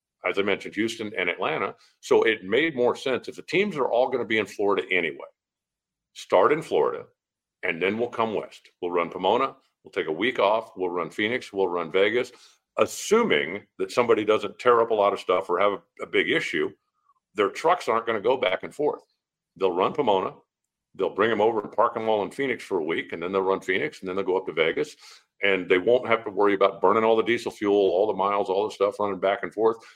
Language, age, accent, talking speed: English, 50-69, American, 235 wpm